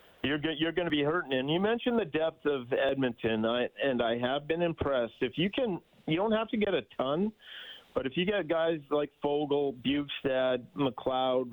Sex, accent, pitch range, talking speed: male, American, 125-155 Hz, 200 wpm